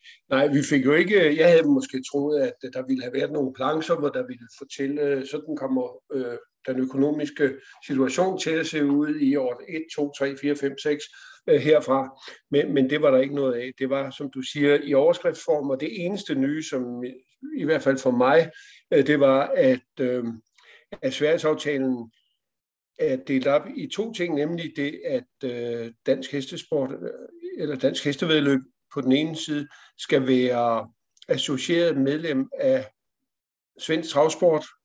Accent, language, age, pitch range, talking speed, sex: native, Danish, 50-69, 130-160 Hz, 160 wpm, male